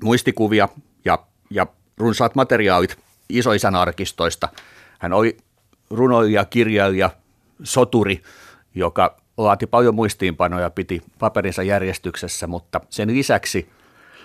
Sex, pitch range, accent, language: male, 85-105 Hz, native, Finnish